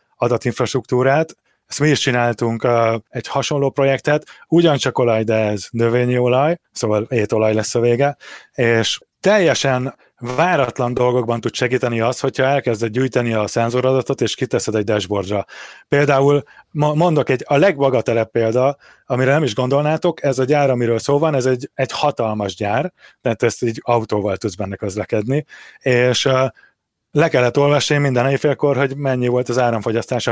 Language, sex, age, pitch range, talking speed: Hungarian, male, 30-49, 115-140 Hz, 145 wpm